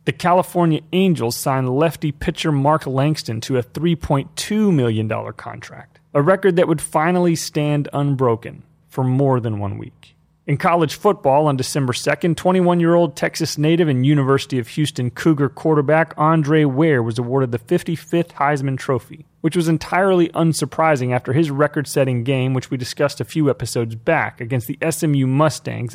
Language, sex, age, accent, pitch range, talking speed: English, male, 30-49, American, 130-165 Hz, 155 wpm